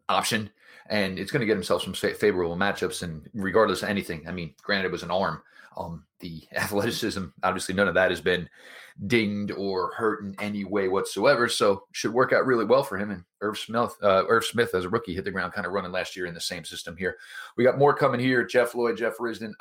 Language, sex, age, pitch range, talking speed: English, male, 30-49, 95-115 Hz, 235 wpm